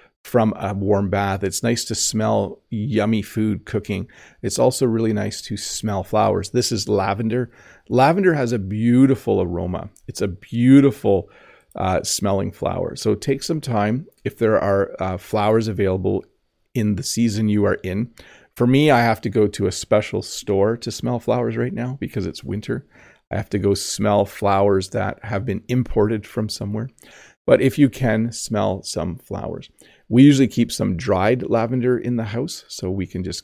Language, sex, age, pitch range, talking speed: English, male, 40-59, 100-125 Hz, 175 wpm